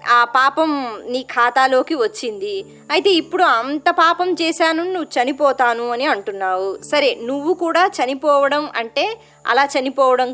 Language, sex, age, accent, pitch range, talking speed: Telugu, male, 20-39, native, 220-340 Hz, 120 wpm